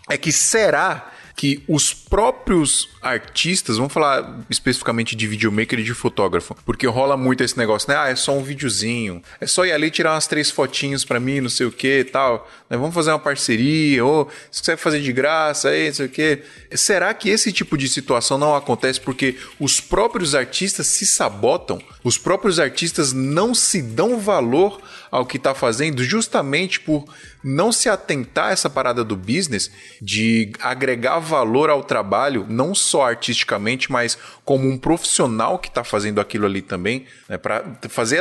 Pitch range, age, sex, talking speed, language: 130-170 Hz, 20-39, male, 175 wpm, Portuguese